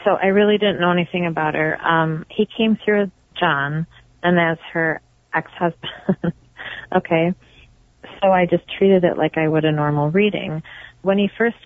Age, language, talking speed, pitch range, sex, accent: 30-49, English, 170 wpm, 150-175 Hz, female, American